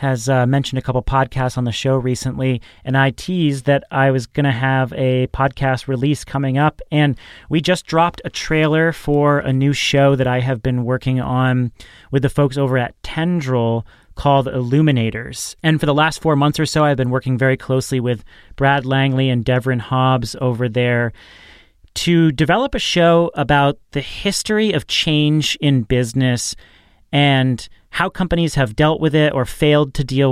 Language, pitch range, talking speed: English, 125-150 Hz, 180 wpm